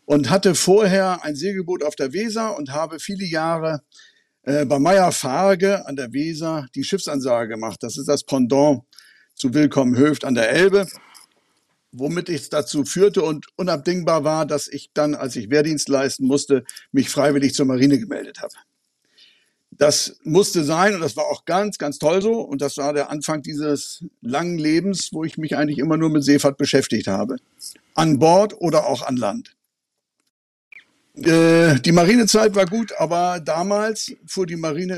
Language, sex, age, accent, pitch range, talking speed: German, male, 60-79, German, 140-175 Hz, 170 wpm